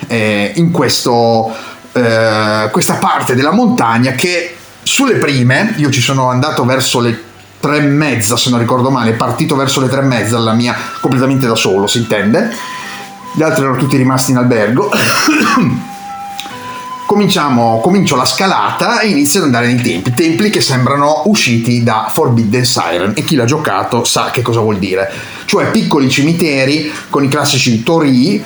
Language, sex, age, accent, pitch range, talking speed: Italian, male, 30-49, native, 120-155 Hz, 160 wpm